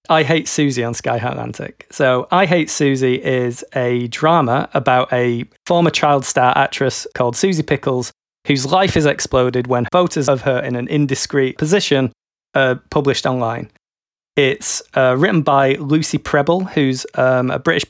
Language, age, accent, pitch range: English, 20-39, British, 130-160 Hz